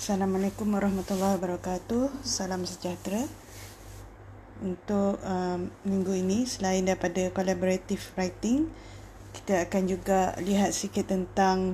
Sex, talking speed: female, 95 wpm